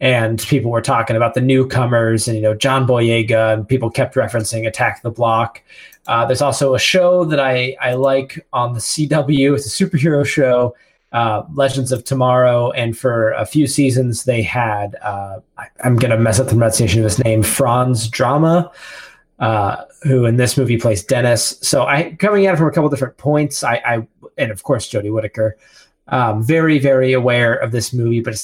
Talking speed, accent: 200 wpm, American